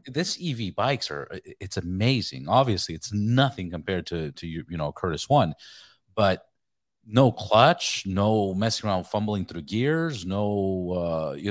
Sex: male